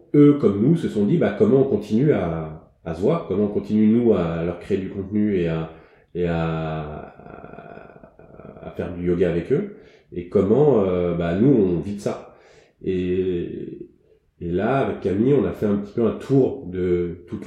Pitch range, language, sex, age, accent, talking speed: 85-105 Hz, French, male, 30-49, French, 200 wpm